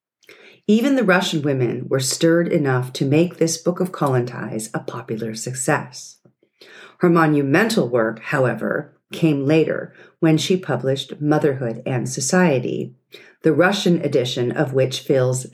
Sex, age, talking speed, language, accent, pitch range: female, 50-69, 130 wpm, English, American, 130-185 Hz